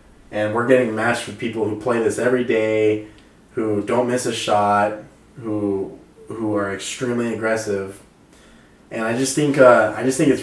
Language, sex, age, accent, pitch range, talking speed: English, male, 20-39, American, 105-120 Hz, 175 wpm